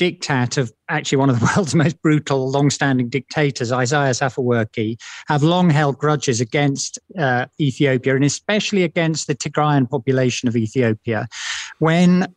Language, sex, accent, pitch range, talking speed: English, male, British, 125-155 Hz, 145 wpm